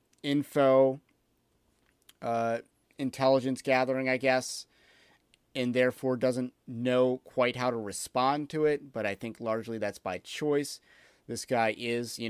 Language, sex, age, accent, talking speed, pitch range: English, male, 30-49, American, 130 wpm, 115-130 Hz